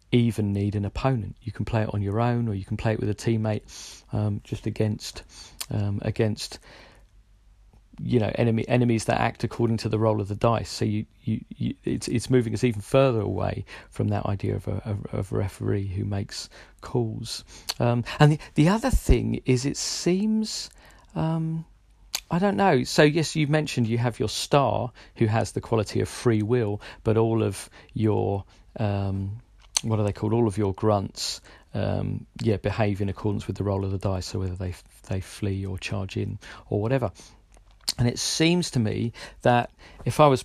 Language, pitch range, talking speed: English, 105-120 Hz, 195 wpm